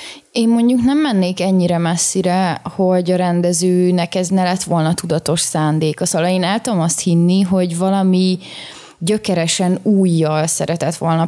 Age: 20-39